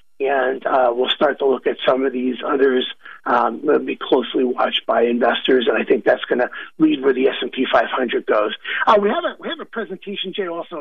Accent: American